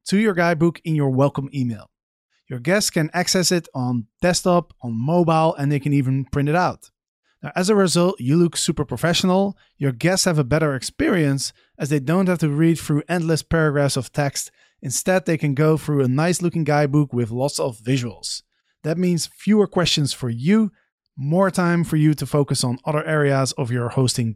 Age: 30-49